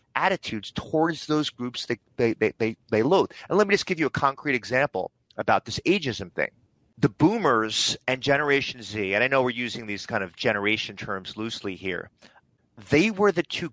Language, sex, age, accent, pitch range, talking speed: English, male, 30-49, American, 115-160 Hz, 190 wpm